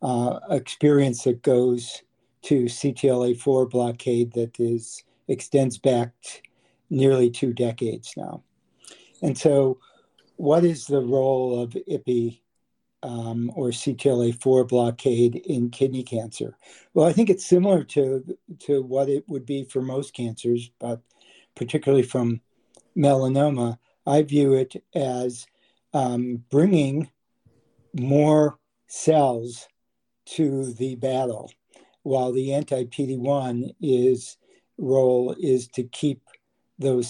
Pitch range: 120-140 Hz